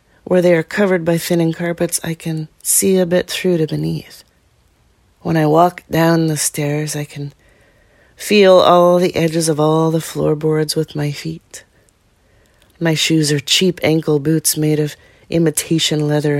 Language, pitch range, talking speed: English, 145-175 Hz, 160 wpm